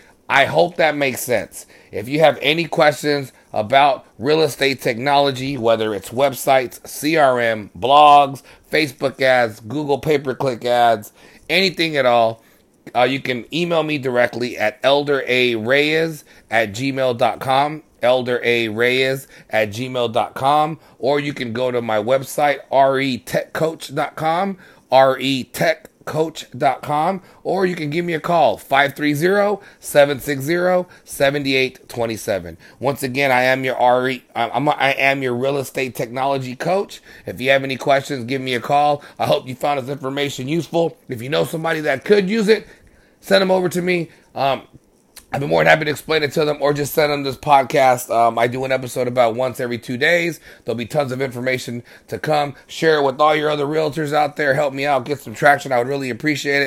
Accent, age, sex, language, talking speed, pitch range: American, 30-49, male, English, 165 wpm, 125-150 Hz